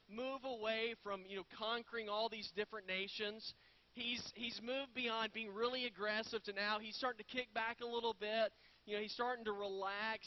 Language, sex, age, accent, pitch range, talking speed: English, male, 40-59, American, 195-235 Hz, 195 wpm